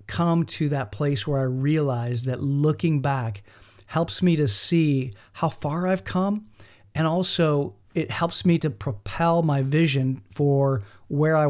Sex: male